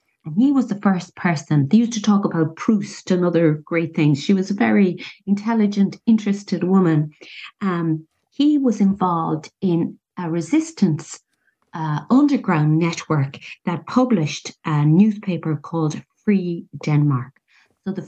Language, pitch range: English, 170-215 Hz